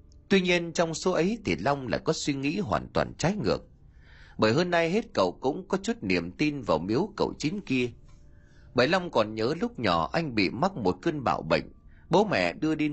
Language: Vietnamese